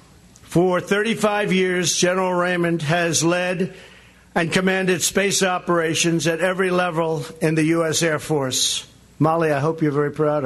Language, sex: English, male